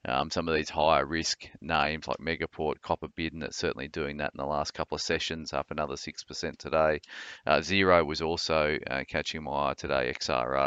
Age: 30-49